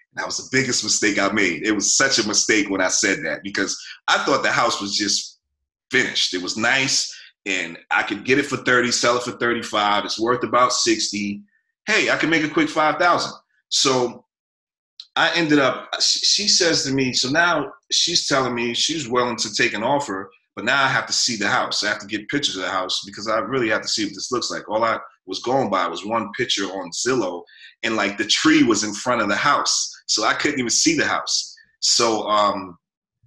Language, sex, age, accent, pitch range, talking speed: English, male, 30-49, American, 105-140 Hz, 220 wpm